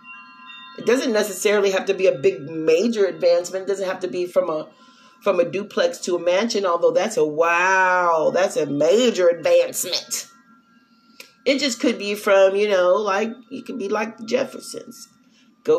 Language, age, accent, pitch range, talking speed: English, 30-49, American, 195-260 Hz, 170 wpm